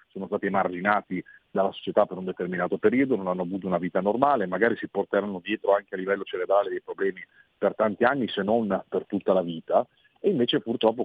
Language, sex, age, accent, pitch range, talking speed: Italian, male, 40-59, native, 95-140 Hz, 200 wpm